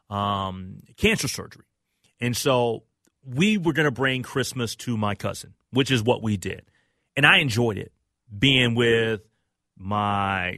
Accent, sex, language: American, male, English